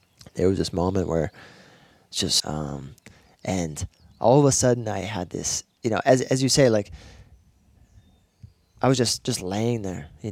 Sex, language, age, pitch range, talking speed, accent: male, English, 20-39, 90-120 Hz, 175 wpm, American